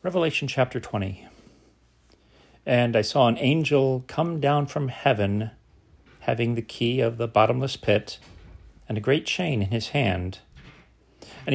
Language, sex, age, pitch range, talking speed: English, male, 40-59, 105-135 Hz, 140 wpm